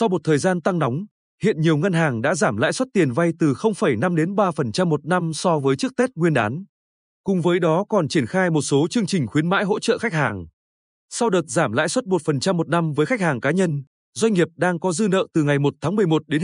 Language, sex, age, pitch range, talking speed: Vietnamese, male, 20-39, 150-190 Hz, 250 wpm